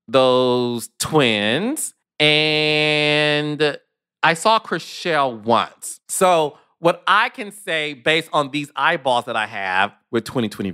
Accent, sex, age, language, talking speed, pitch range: American, male, 30-49, English, 115 wpm, 120-170 Hz